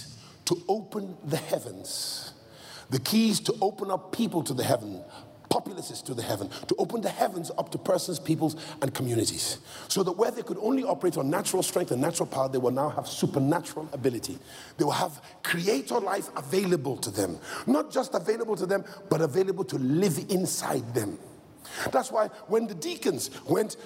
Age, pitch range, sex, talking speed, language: 50-69, 140-205 Hz, male, 180 wpm, English